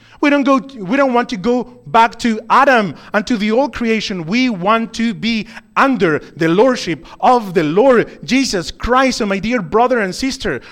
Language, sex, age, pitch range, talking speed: English, male, 30-49, 160-235 Hz, 190 wpm